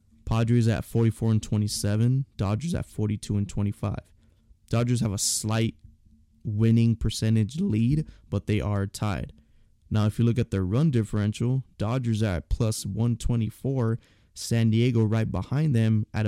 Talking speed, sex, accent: 145 wpm, male, American